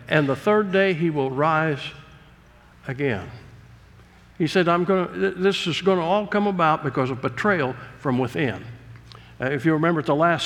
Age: 60-79